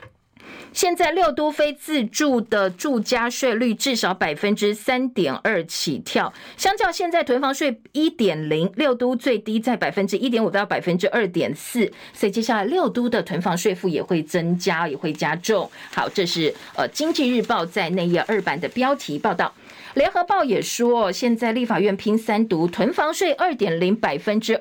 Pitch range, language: 195-275 Hz, Chinese